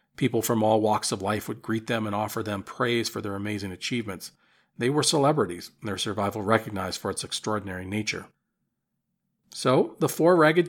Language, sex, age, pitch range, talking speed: English, male, 40-59, 110-145 Hz, 175 wpm